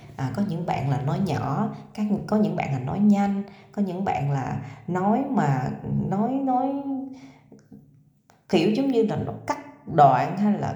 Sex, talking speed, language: female, 175 wpm, Vietnamese